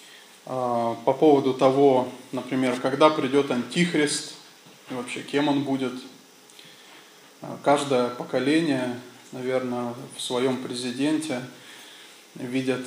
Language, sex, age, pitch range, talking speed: English, male, 20-39, 130-155 Hz, 90 wpm